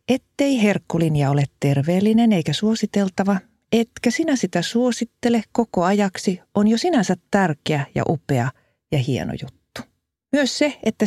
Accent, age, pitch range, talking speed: native, 50-69, 160-235 Hz, 130 wpm